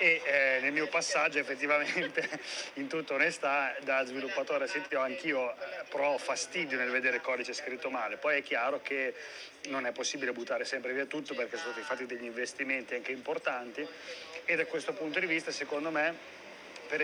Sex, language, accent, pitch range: male, Italian, native, 135-155 Hz